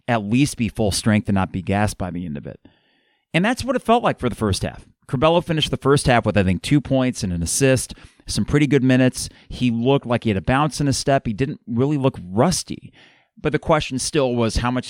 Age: 30-49